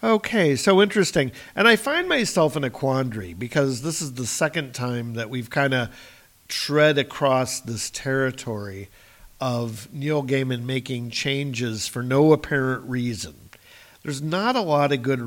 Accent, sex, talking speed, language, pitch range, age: American, male, 155 wpm, English, 120-155 Hz, 50-69